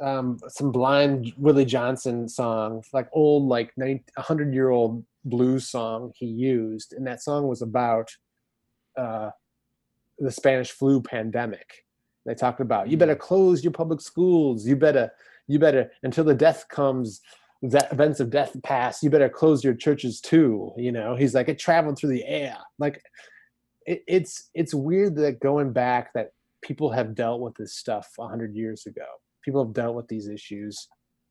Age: 20-39